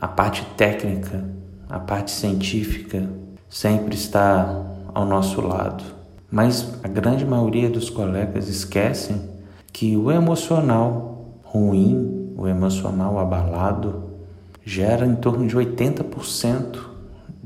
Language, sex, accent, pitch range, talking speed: Portuguese, male, Brazilian, 95-120 Hz, 105 wpm